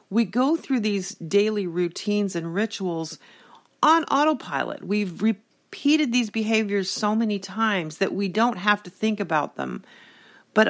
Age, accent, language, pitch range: 40-59, American, English, 175-220 Hz